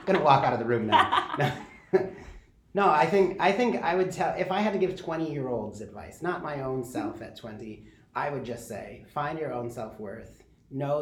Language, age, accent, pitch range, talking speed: English, 30-49, American, 120-145 Hz, 210 wpm